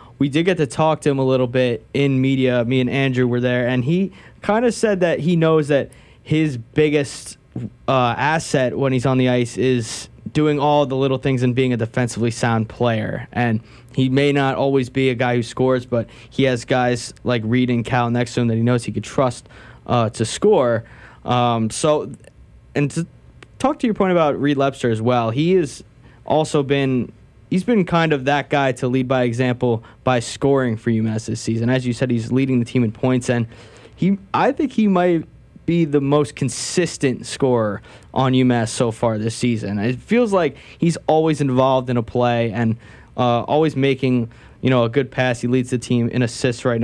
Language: English